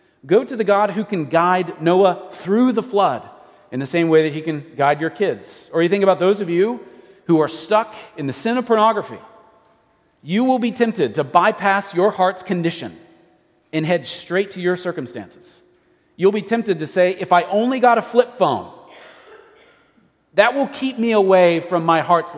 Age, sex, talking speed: 40-59, male, 190 wpm